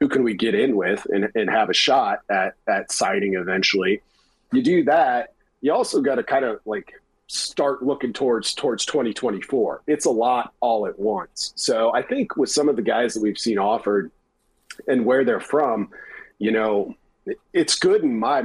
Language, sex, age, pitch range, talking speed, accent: English, male, 40-59, 110-150 Hz, 190 wpm, American